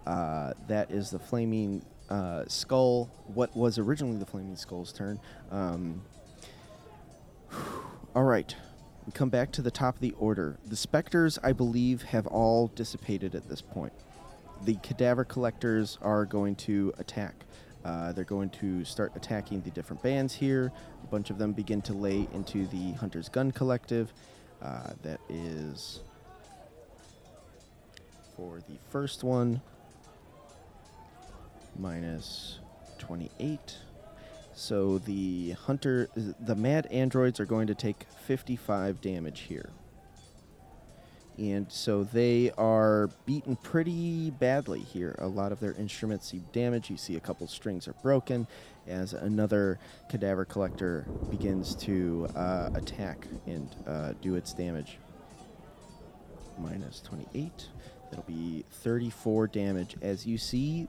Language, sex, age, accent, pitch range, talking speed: English, male, 30-49, American, 90-120 Hz, 130 wpm